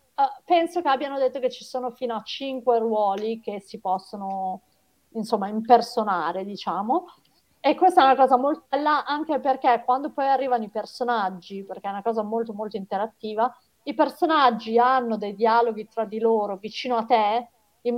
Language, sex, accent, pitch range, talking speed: Italian, female, native, 215-260 Hz, 165 wpm